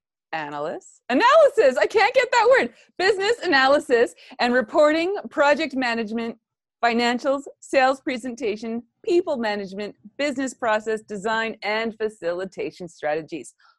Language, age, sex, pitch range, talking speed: English, 30-49, female, 185-250 Hz, 105 wpm